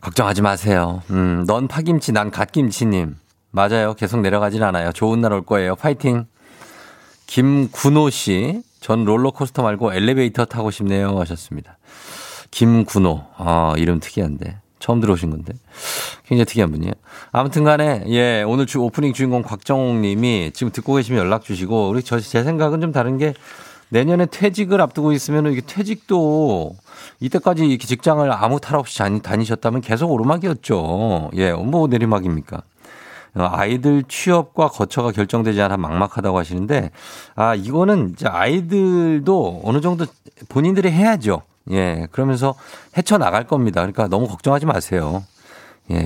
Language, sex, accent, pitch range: Korean, male, native, 100-140 Hz